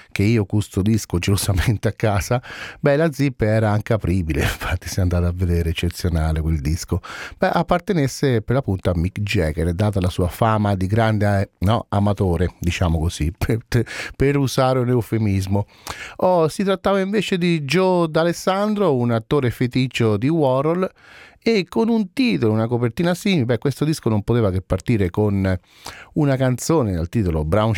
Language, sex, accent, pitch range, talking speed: Italian, male, native, 95-135 Hz, 160 wpm